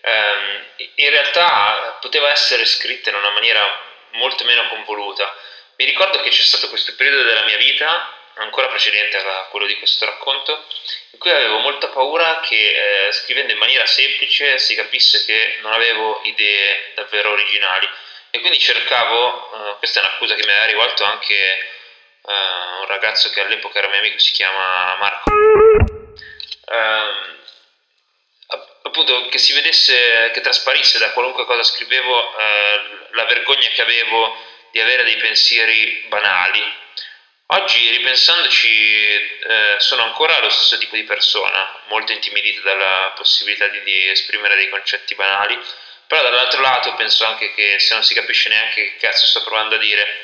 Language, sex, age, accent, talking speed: Italian, male, 20-39, native, 150 wpm